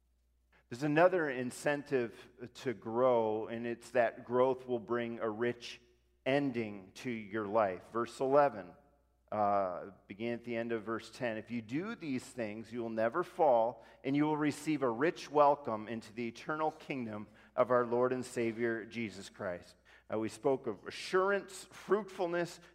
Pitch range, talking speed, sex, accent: 110-145 Hz, 155 wpm, male, American